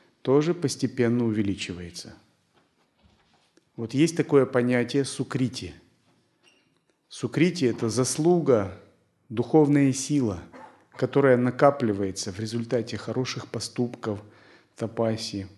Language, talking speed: Russian, 75 wpm